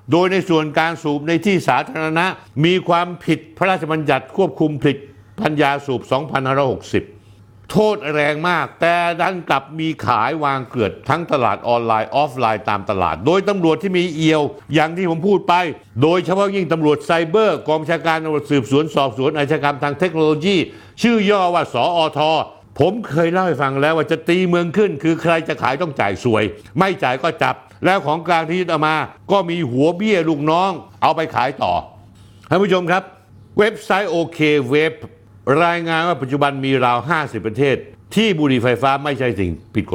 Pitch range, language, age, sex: 125-170 Hz, Thai, 60-79, male